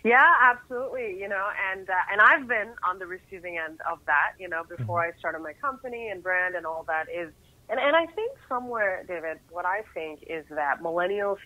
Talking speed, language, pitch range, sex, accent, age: 210 wpm, English, 165-205 Hz, female, American, 30-49